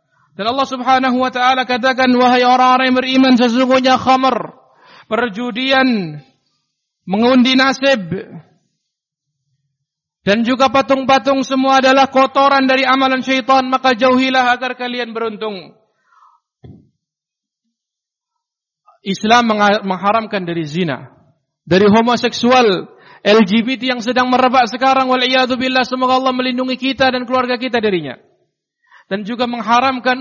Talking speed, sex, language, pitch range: 100 wpm, male, Indonesian, 175-255 Hz